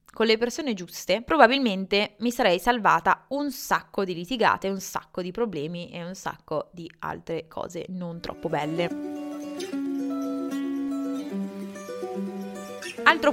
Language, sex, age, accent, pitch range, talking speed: Italian, female, 20-39, native, 185-245 Hz, 115 wpm